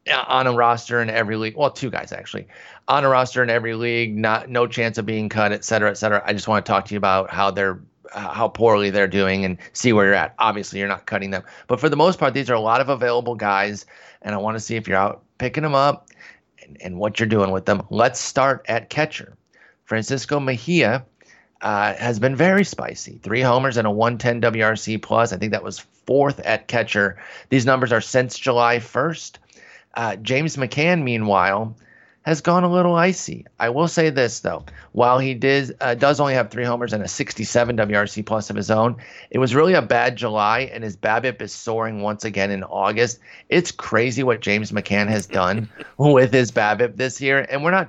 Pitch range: 105-130 Hz